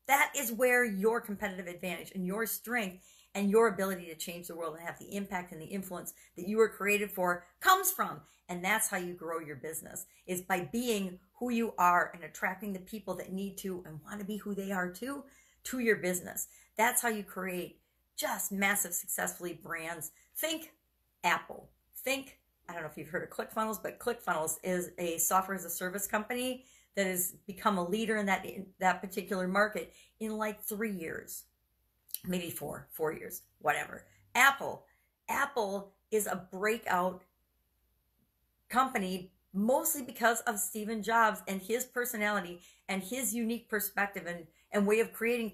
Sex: female